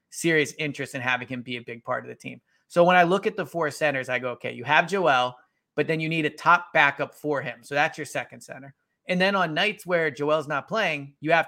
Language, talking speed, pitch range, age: English, 260 wpm, 135-160 Hz, 30-49